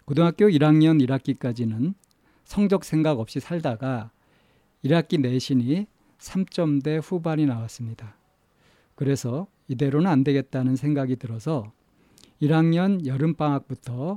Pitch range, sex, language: 130-170 Hz, male, Korean